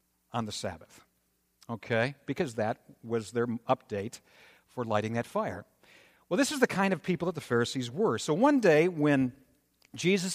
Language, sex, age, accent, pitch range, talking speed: English, male, 60-79, American, 115-160 Hz, 170 wpm